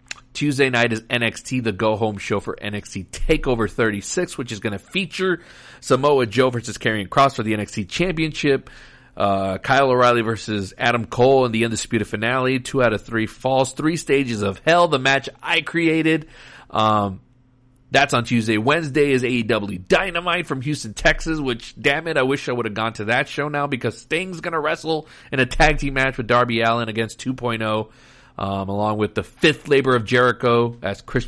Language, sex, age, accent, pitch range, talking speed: English, male, 40-59, American, 110-135 Hz, 185 wpm